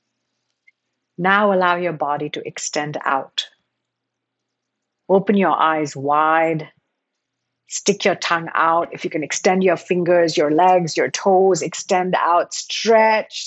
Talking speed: 125 wpm